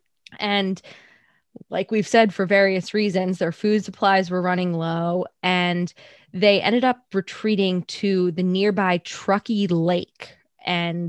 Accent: American